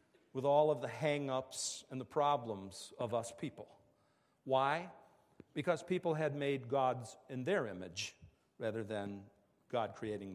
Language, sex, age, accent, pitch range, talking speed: English, male, 50-69, American, 110-150 Hz, 140 wpm